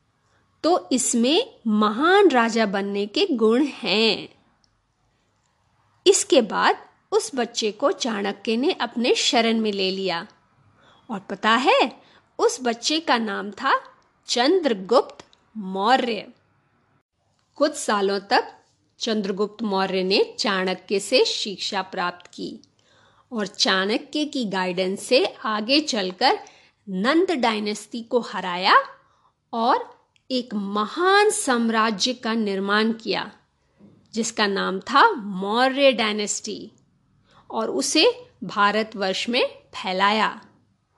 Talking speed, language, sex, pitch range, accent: 100 wpm, English, female, 205-285 Hz, Indian